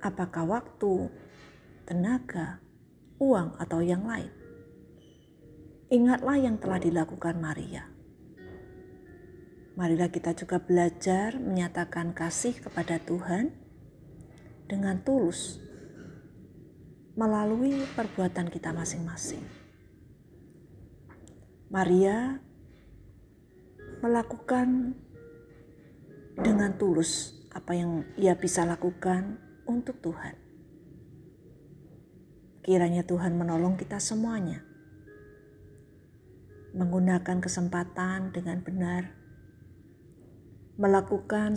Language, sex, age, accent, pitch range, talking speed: Indonesian, female, 40-59, native, 155-200 Hz, 70 wpm